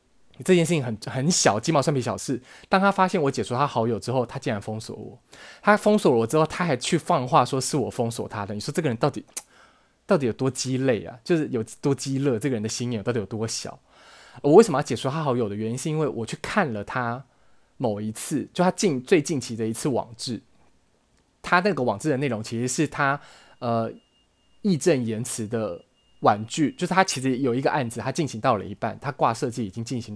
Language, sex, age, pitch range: Chinese, male, 20-39, 115-150 Hz